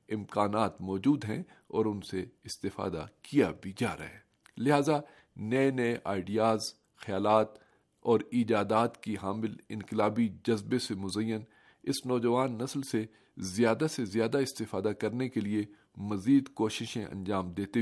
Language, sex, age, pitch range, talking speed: Urdu, male, 50-69, 105-125 Hz, 135 wpm